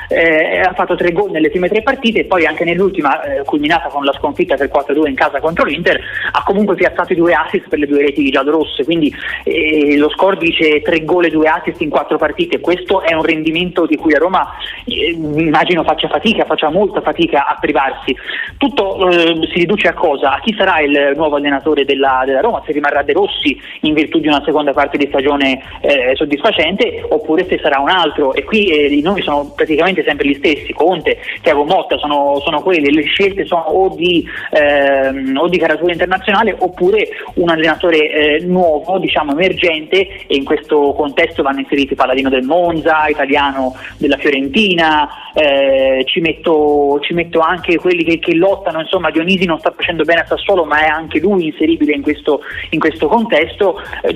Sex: male